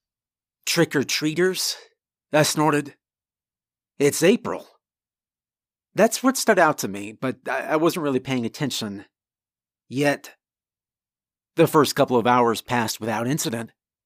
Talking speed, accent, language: 110 wpm, American, English